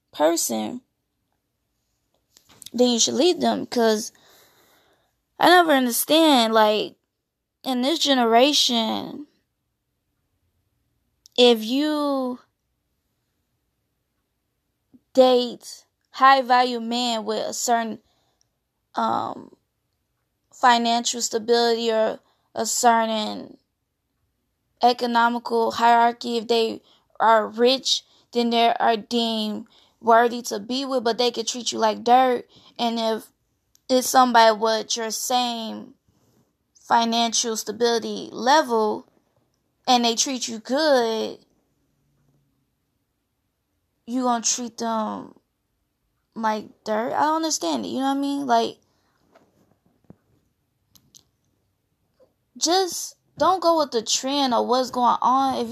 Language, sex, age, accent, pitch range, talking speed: English, female, 10-29, American, 225-260 Hz, 100 wpm